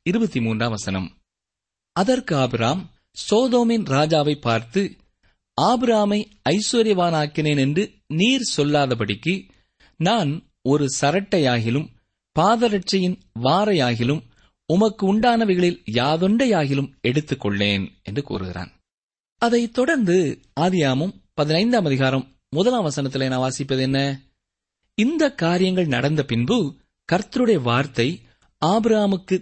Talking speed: 80 wpm